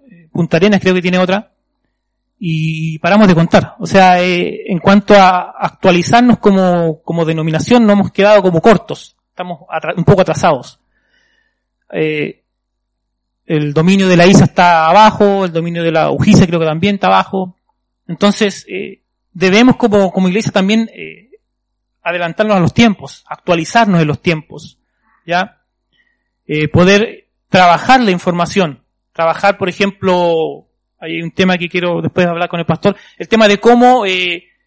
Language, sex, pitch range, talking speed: Spanish, male, 170-210 Hz, 150 wpm